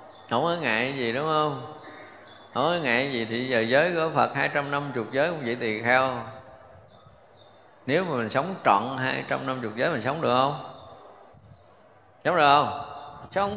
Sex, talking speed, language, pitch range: male, 170 wpm, Vietnamese, 130-180 Hz